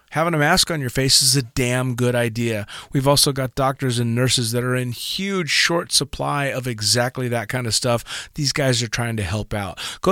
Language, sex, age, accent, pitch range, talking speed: English, male, 40-59, American, 115-145 Hz, 220 wpm